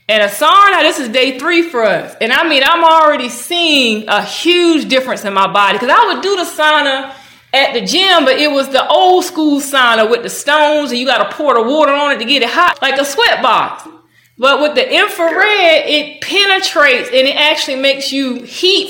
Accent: American